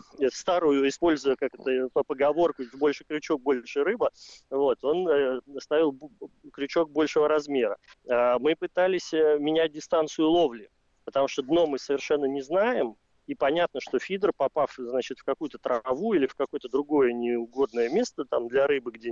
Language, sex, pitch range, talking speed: Russian, male, 130-185 Hz, 160 wpm